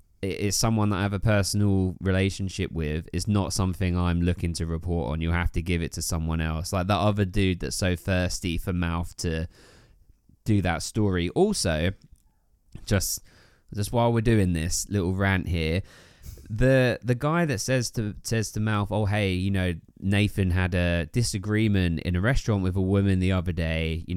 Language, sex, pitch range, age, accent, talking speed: English, male, 85-105 Hz, 20-39, British, 185 wpm